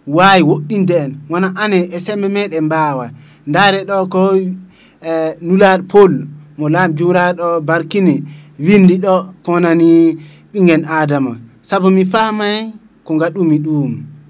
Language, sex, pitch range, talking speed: English, male, 155-190 Hz, 120 wpm